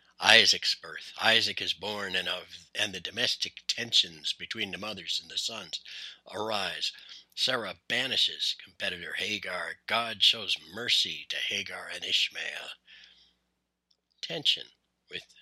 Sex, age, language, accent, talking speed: male, 60-79, English, American, 115 wpm